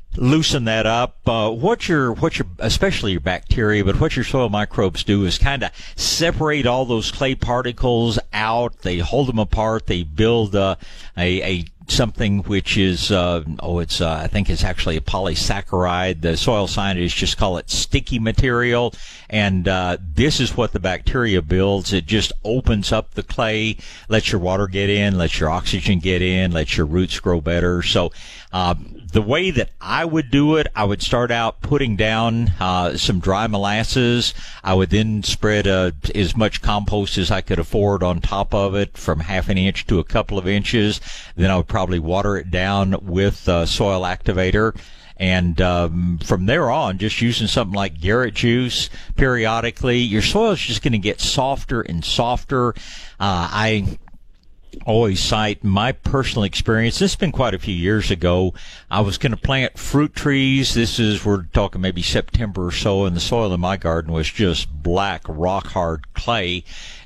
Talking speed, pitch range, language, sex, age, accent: 185 wpm, 90-115 Hz, English, male, 60-79, American